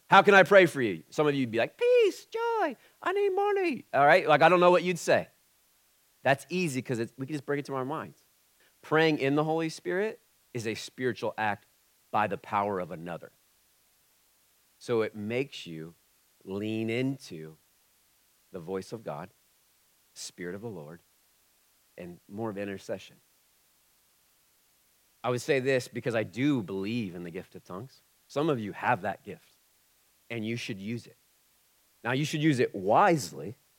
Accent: American